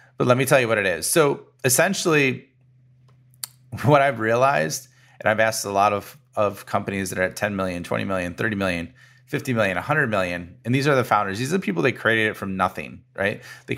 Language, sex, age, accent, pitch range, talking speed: English, male, 30-49, American, 105-130 Hz, 220 wpm